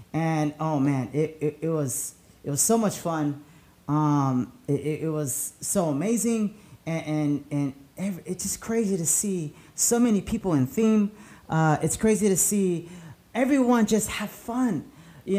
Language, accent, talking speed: English, American, 165 wpm